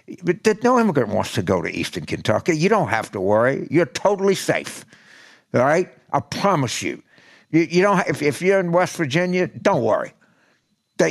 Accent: American